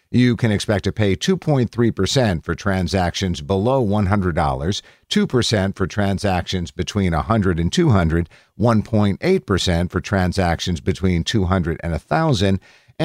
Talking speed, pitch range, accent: 110 wpm, 90-115 Hz, American